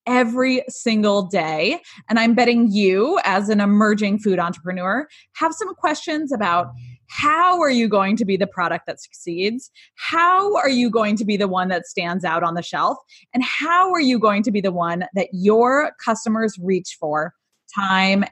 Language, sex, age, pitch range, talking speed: English, female, 20-39, 185-260 Hz, 180 wpm